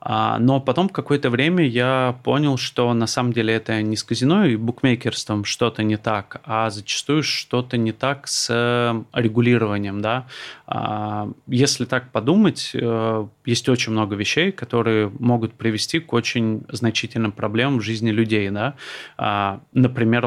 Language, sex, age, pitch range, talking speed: Russian, male, 30-49, 110-125 Hz, 135 wpm